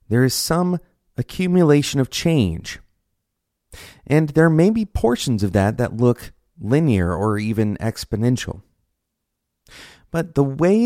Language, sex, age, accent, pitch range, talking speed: English, male, 30-49, American, 95-130 Hz, 120 wpm